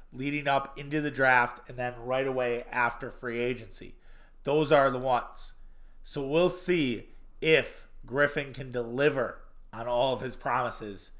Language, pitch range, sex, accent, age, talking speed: English, 120-140 Hz, male, American, 30-49, 150 wpm